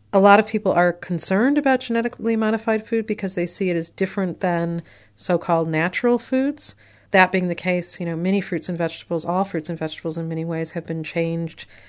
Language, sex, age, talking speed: English, female, 40-59, 200 wpm